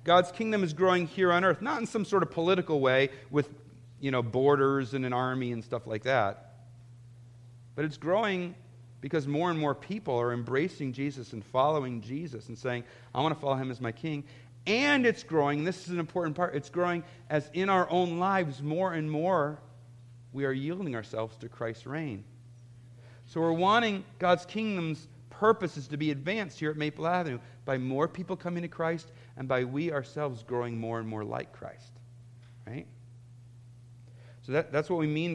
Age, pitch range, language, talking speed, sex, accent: 40-59, 120-160 Hz, English, 185 wpm, male, American